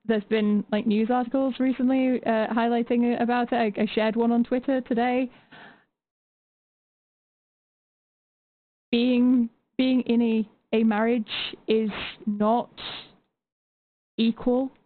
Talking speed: 105 wpm